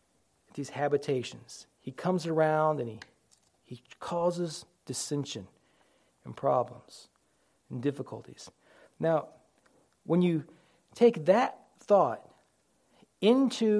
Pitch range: 145-195 Hz